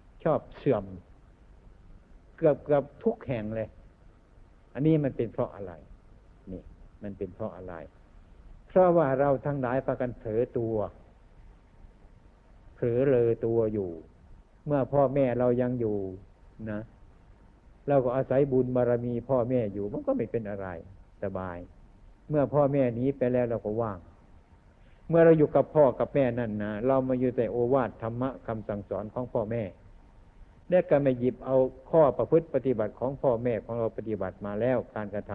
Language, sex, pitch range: Thai, male, 100-135 Hz